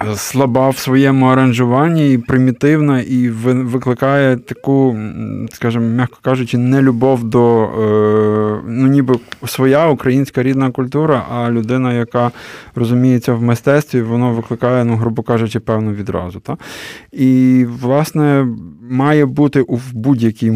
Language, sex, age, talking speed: Ukrainian, male, 20-39, 125 wpm